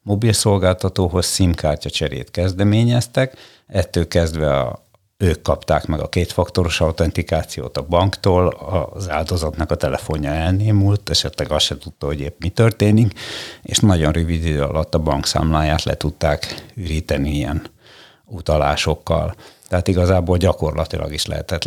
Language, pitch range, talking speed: Hungarian, 80-95 Hz, 125 wpm